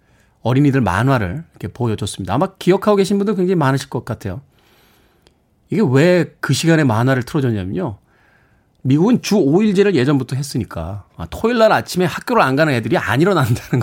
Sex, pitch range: male, 110-155 Hz